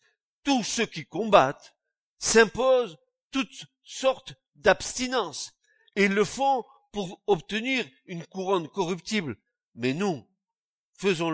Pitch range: 130-210 Hz